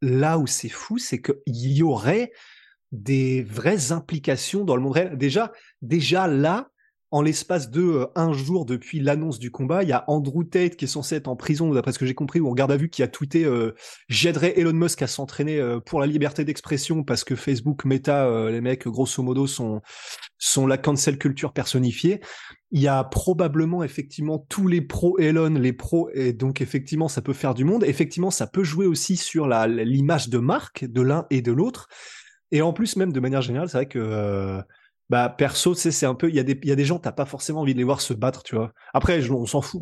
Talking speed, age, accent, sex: 230 wpm, 20-39, French, male